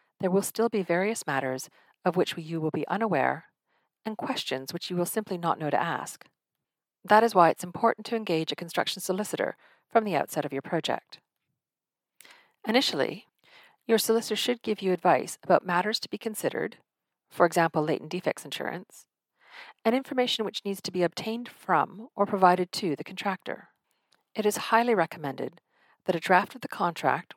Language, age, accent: English, 40-59, American